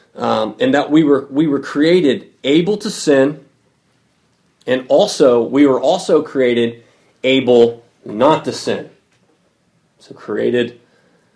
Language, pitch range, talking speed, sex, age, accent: English, 120-160 Hz, 120 wpm, male, 30-49, American